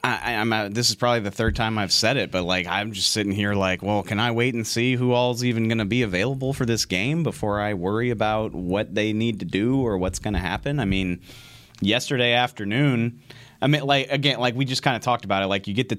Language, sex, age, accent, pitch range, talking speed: English, male, 30-49, American, 95-120 Hz, 260 wpm